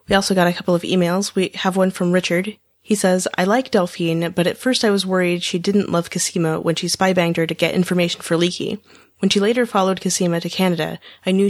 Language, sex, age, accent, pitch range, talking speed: English, female, 30-49, American, 165-200 Hz, 235 wpm